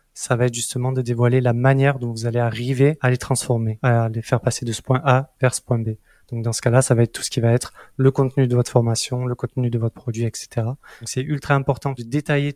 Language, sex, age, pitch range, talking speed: French, male, 20-39, 120-140 Hz, 270 wpm